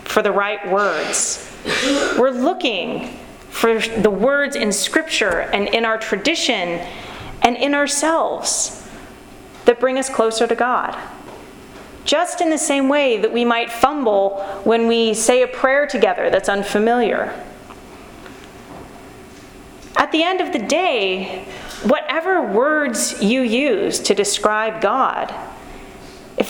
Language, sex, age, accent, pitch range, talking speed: English, female, 30-49, American, 205-275 Hz, 125 wpm